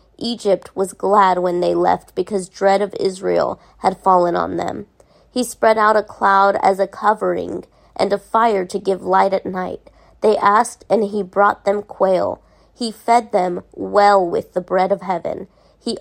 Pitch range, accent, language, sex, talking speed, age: 185-210 Hz, American, English, female, 175 wpm, 30-49